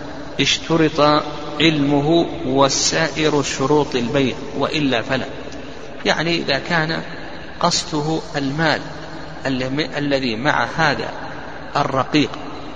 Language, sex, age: Arabic, male, 50-69